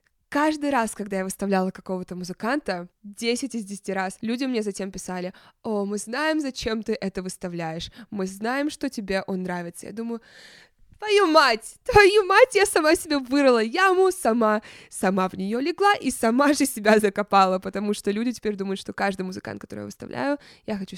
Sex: female